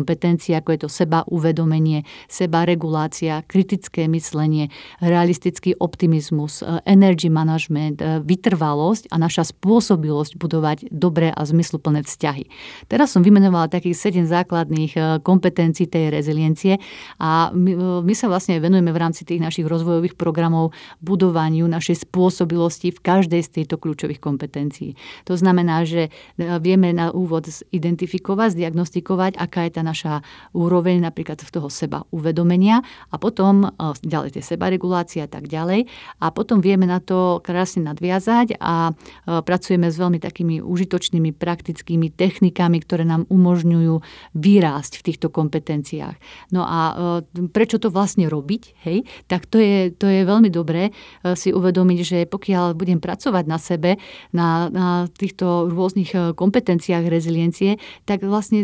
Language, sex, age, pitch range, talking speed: Slovak, female, 40-59, 165-185 Hz, 135 wpm